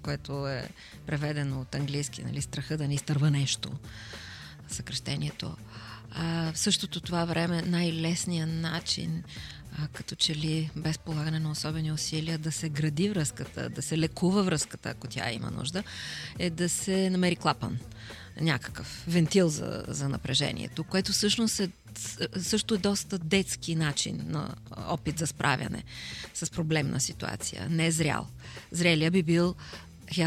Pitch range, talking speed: 140-175 Hz, 145 wpm